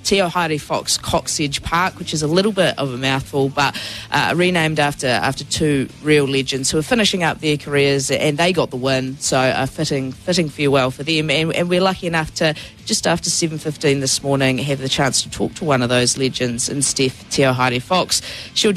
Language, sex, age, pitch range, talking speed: English, female, 30-49, 140-170 Hz, 210 wpm